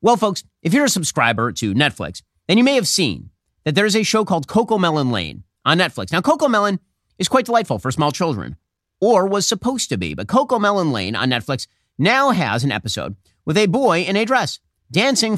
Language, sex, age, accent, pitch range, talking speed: English, male, 30-49, American, 120-185 Hz, 215 wpm